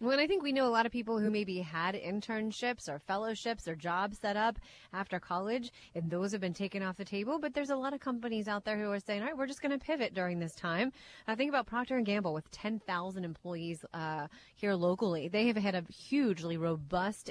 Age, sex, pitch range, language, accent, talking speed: 30-49, female, 185-240 Hz, English, American, 240 wpm